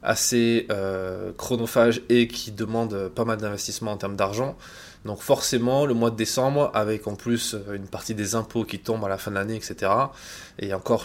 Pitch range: 105-120 Hz